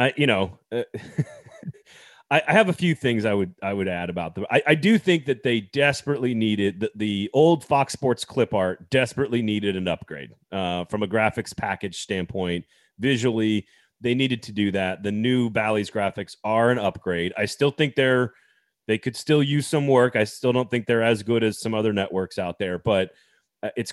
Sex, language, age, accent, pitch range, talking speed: male, English, 30-49, American, 105-135 Hz, 200 wpm